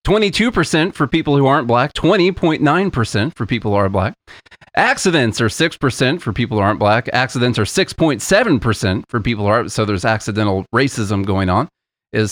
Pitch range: 110-155 Hz